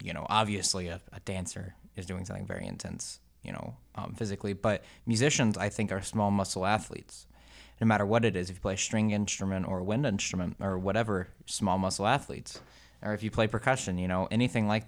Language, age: English, 20-39